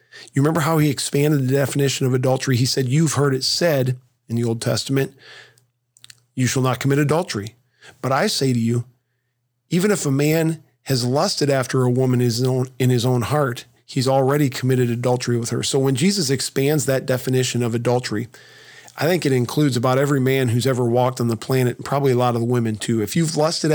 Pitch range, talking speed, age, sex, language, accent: 125-150 Hz, 200 wpm, 40-59, male, English, American